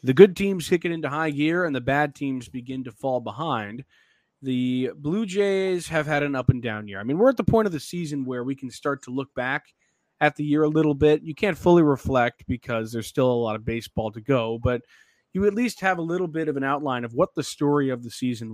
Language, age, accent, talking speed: English, 20-39, American, 255 wpm